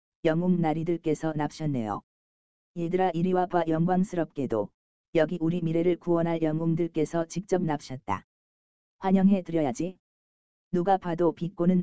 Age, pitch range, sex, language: 40-59, 115-180 Hz, female, Korean